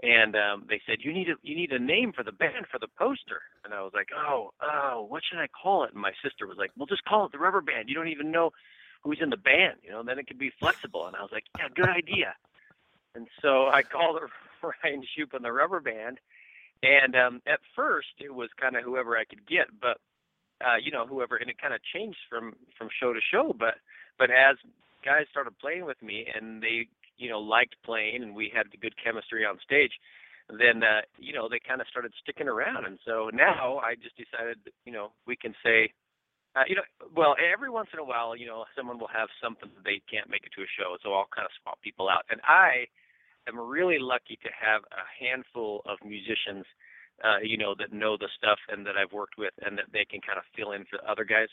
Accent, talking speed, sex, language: American, 240 wpm, male, English